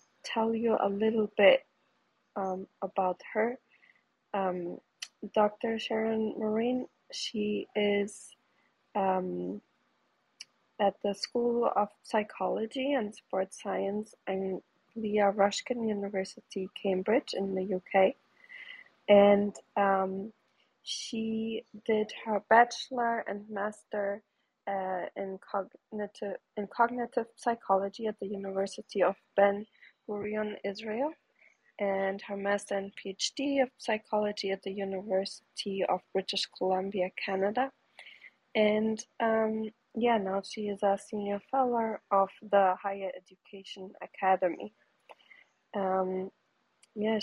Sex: female